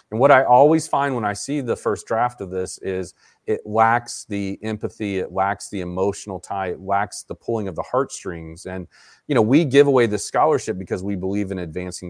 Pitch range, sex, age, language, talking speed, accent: 90-110 Hz, male, 40-59, English, 215 wpm, American